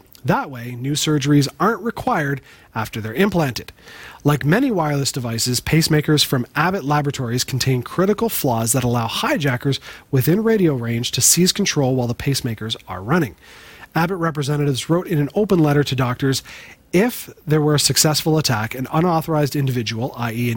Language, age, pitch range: English, 30-49, 125-155 Hz